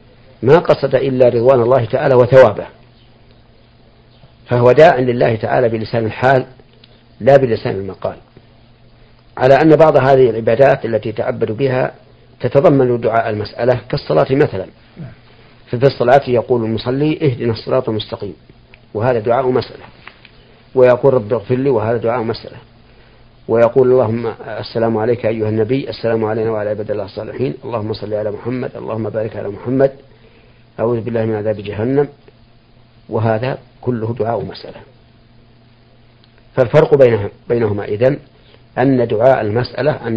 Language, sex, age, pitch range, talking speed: Arabic, male, 50-69, 115-130 Hz, 125 wpm